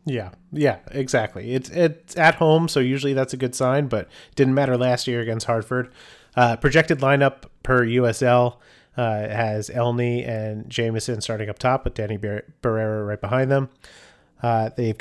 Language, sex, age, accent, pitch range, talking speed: English, male, 30-49, American, 110-130 Hz, 165 wpm